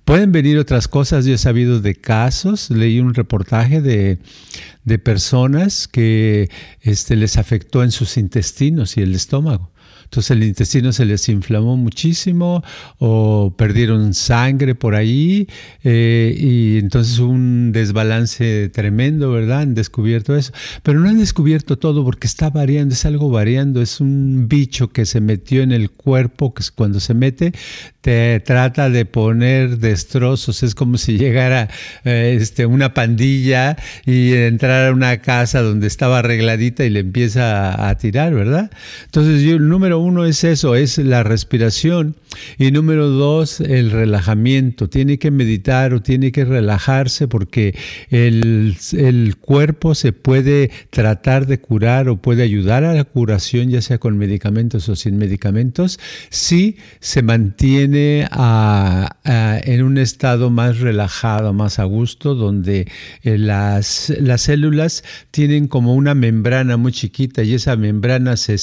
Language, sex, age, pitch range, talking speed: Spanish, male, 50-69, 110-140 Hz, 150 wpm